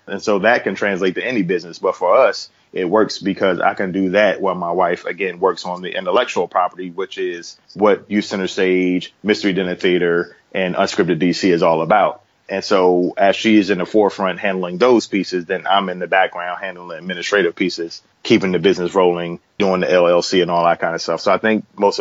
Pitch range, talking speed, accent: 90-100 Hz, 215 wpm, American